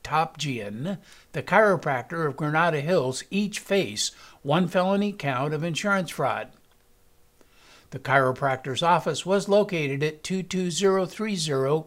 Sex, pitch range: male, 140-185 Hz